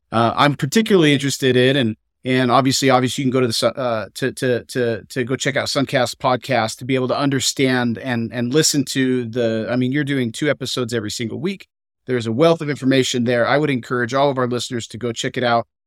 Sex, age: male, 40-59